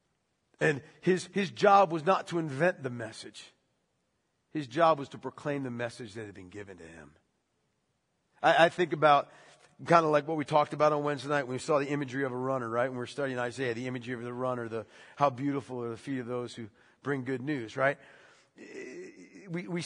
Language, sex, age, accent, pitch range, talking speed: English, male, 50-69, American, 140-200 Hz, 215 wpm